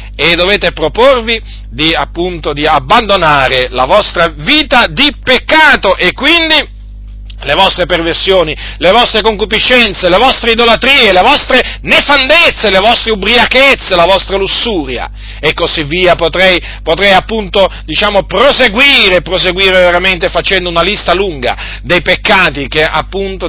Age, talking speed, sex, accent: 40-59, 130 wpm, male, native